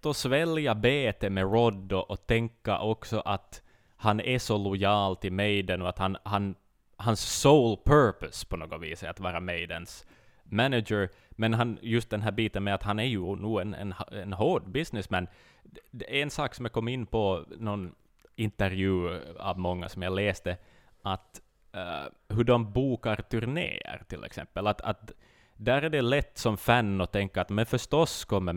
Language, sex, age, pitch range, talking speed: Swedish, male, 20-39, 90-115 Hz, 180 wpm